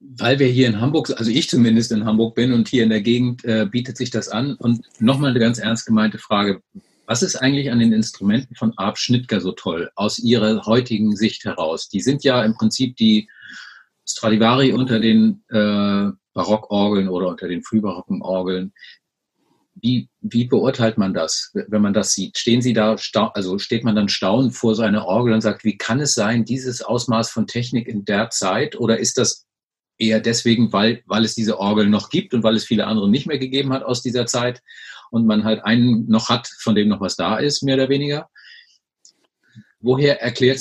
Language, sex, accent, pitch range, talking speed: German, male, German, 110-130 Hz, 200 wpm